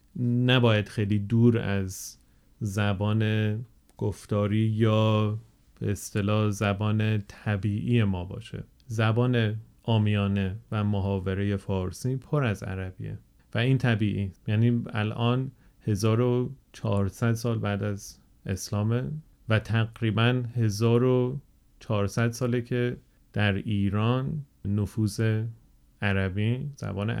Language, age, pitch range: Persian, 30-49, 100-115 Hz